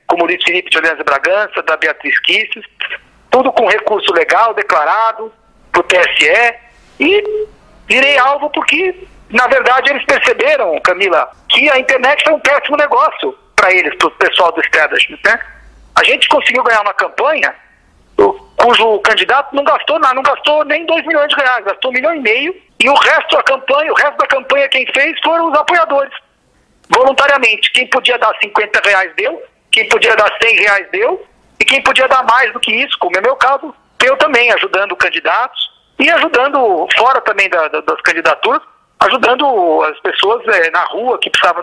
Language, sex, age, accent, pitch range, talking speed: Portuguese, male, 60-79, Brazilian, 230-310 Hz, 175 wpm